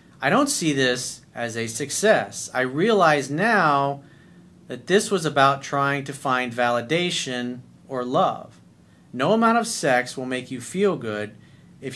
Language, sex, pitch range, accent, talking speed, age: English, male, 125-155 Hz, American, 150 wpm, 40-59